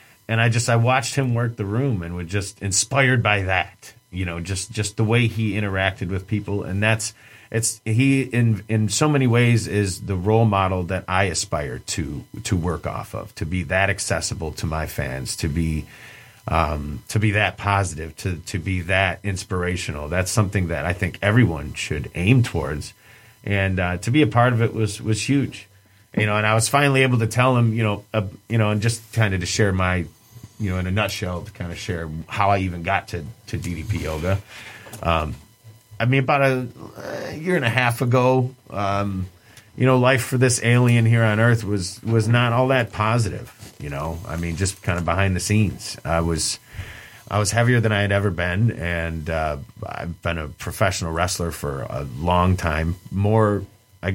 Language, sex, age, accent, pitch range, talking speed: English, male, 40-59, American, 95-115 Hz, 205 wpm